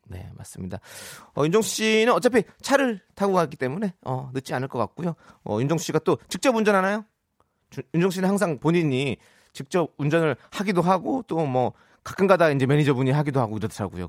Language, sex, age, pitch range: Korean, male, 30-49, 115-195 Hz